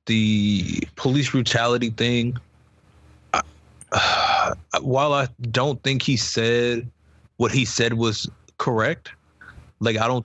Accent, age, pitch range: American, 20-39, 105-125 Hz